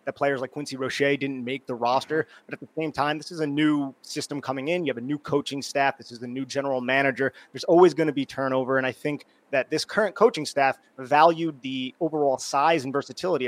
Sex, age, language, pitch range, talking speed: male, 30-49, English, 130-165 Hz, 230 wpm